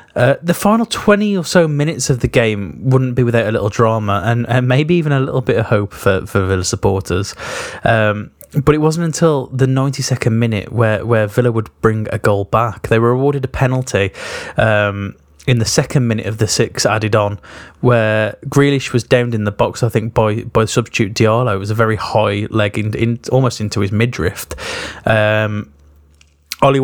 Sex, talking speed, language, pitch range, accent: male, 195 wpm, English, 105-130 Hz, British